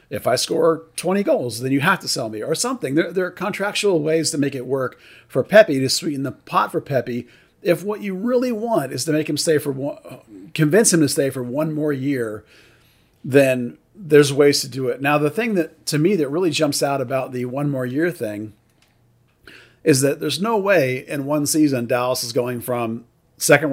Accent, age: American, 40-59